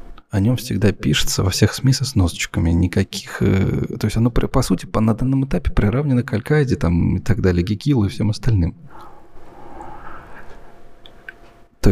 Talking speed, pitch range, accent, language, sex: 150 wpm, 95-120 Hz, native, Russian, male